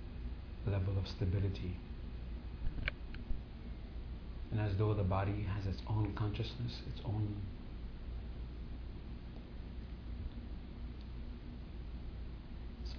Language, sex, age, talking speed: English, male, 60-79, 70 wpm